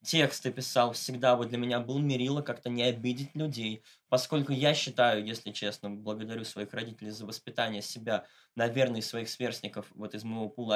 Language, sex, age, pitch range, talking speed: Russian, male, 20-39, 115-130 Hz, 175 wpm